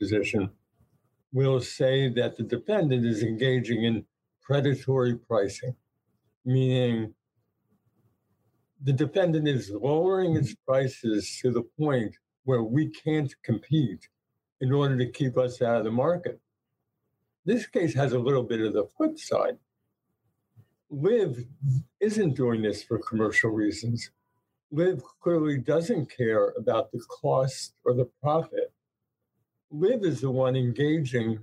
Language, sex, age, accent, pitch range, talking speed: English, male, 60-79, American, 115-150 Hz, 125 wpm